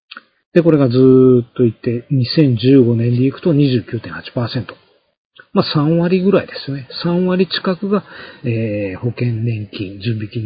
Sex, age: male, 40-59